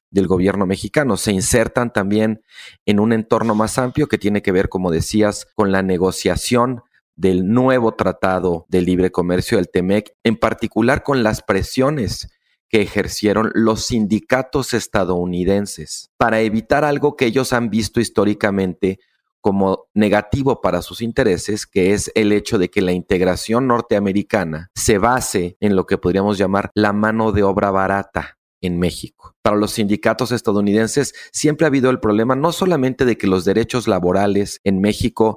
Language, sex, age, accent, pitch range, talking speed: Spanish, male, 40-59, Mexican, 95-120 Hz, 155 wpm